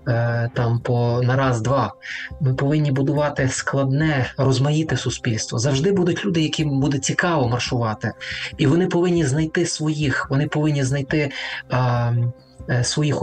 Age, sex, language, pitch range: 20-39, male, Ukrainian, 125-150 Hz